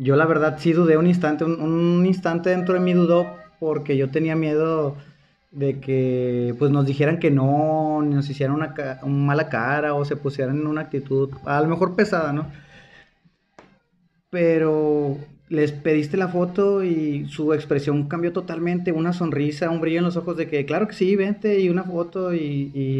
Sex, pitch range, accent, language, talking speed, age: male, 140-170 Hz, Mexican, Spanish, 190 wpm, 30-49